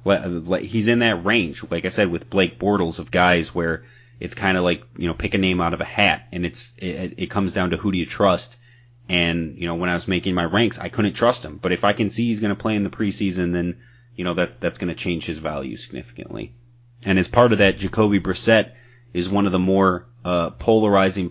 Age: 30-49